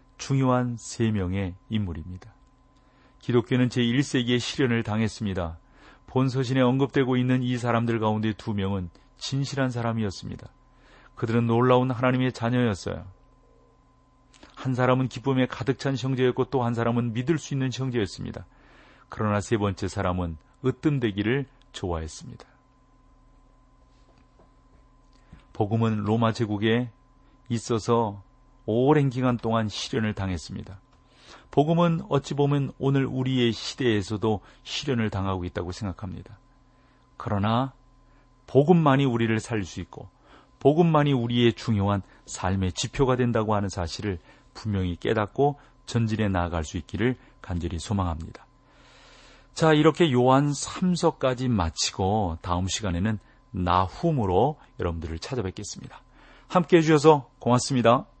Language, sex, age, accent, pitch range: Korean, male, 40-59, native, 105-130 Hz